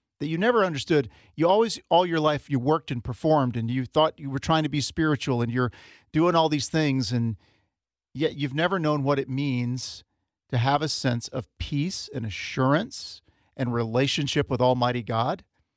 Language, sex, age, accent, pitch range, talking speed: English, male, 40-59, American, 120-150 Hz, 185 wpm